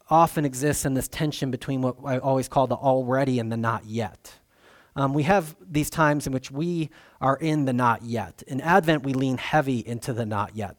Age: 30-49